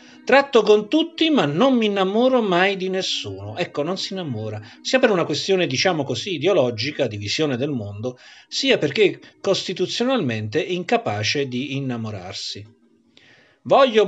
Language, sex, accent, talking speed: Italian, male, native, 140 wpm